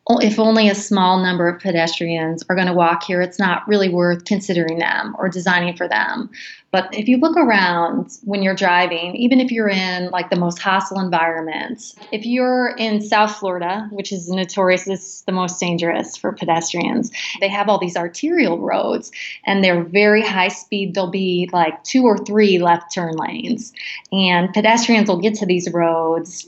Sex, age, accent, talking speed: female, 20-39, American, 180 wpm